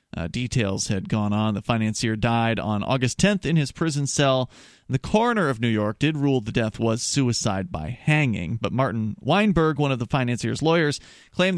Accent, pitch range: American, 110-150 Hz